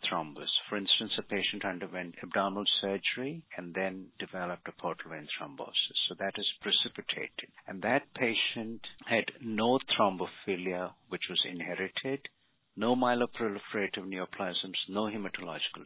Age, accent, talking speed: 50-69, Indian, 125 wpm